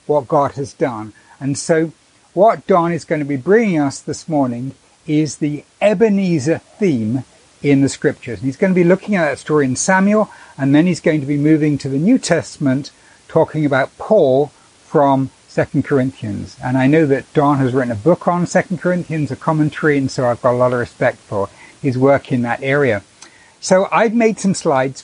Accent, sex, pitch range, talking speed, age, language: British, male, 130-165 Hz, 200 wpm, 60-79, English